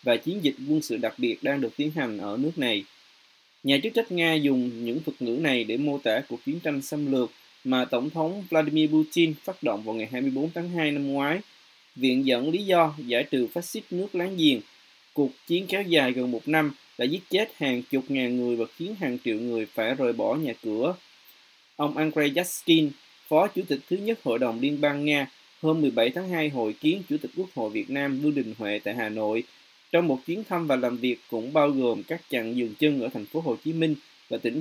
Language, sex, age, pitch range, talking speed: Vietnamese, male, 20-39, 130-170 Hz, 230 wpm